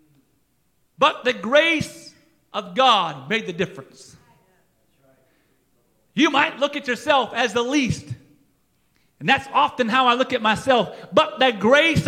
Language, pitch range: English, 190-265 Hz